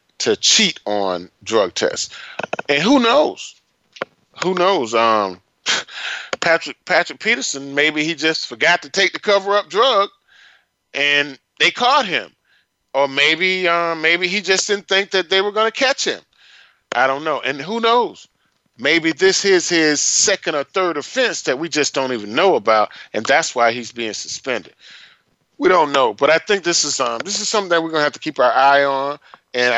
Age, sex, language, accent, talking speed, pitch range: 30-49, male, English, American, 185 wpm, 140-220 Hz